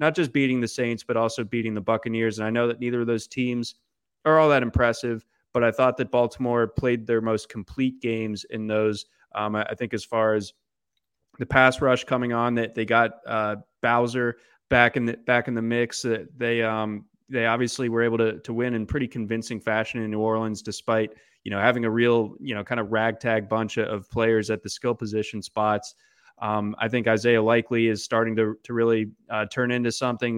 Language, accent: English, American